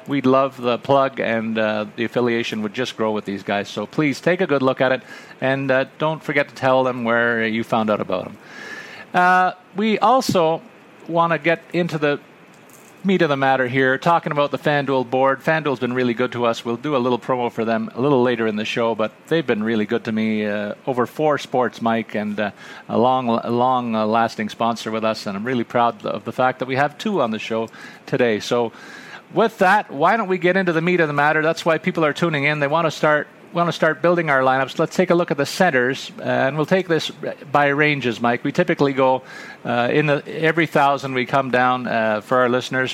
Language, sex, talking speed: English, male, 235 wpm